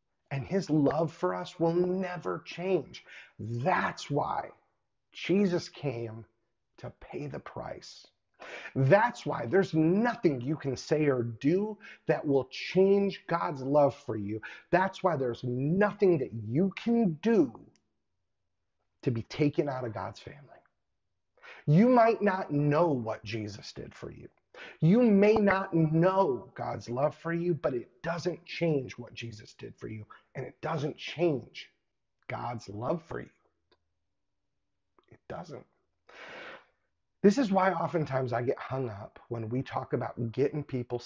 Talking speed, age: 140 wpm, 30-49